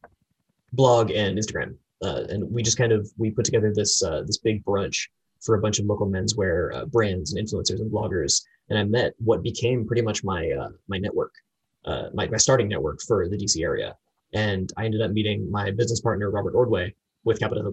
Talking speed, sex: 205 wpm, male